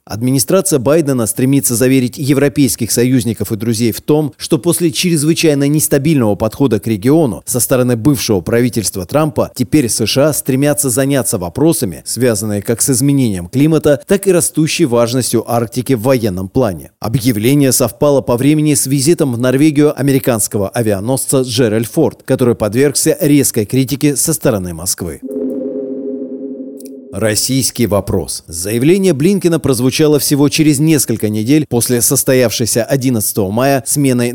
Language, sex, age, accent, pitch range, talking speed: Russian, male, 30-49, native, 115-145 Hz, 130 wpm